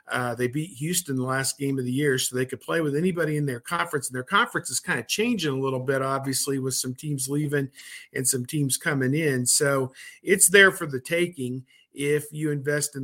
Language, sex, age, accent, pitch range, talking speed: English, male, 50-69, American, 135-155 Hz, 225 wpm